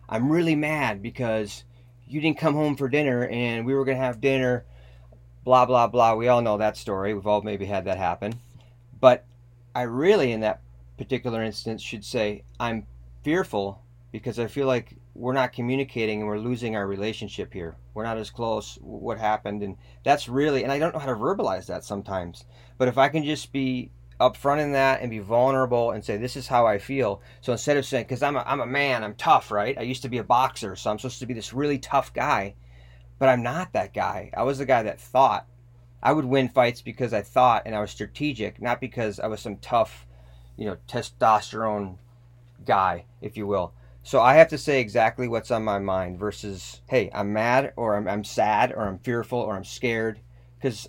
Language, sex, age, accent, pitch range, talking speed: English, male, 30-49, American, 105-130 Hz, 210 wpm